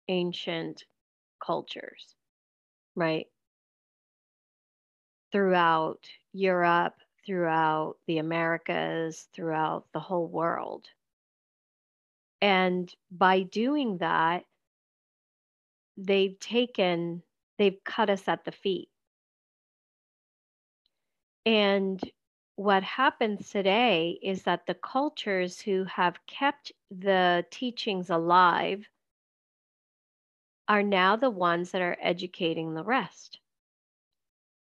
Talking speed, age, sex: 80 wpm, 40-59, female